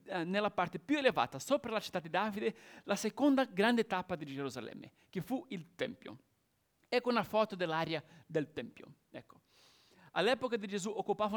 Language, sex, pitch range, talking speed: Italian, male, 175-235 Hz, 155 wpm